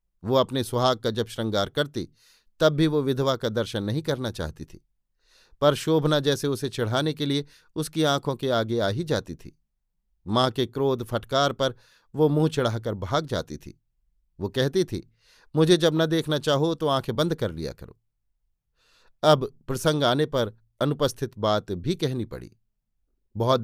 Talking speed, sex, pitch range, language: 170 wpm, male, 120-155 Hz, Hindi